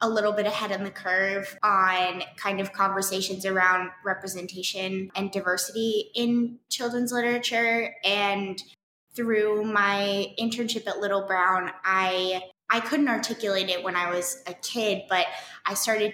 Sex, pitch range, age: female, 185-205 Hz, 20-39